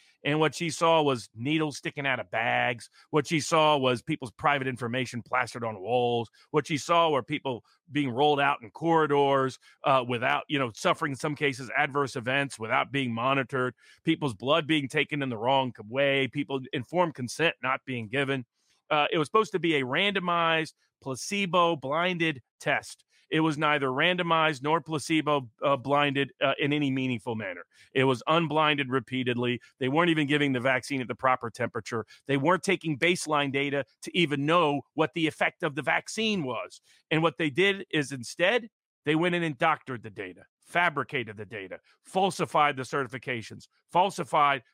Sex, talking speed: male, 170 wpm